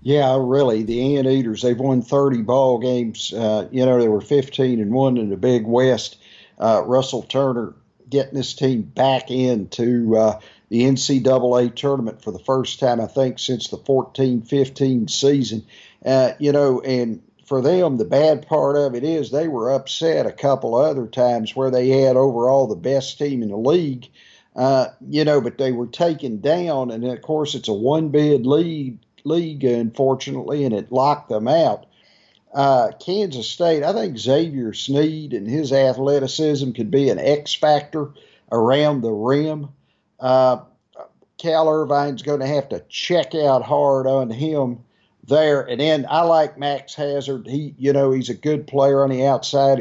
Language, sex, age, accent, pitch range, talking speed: English, male, 50-69, American, 125-145 Hz, 170 wpm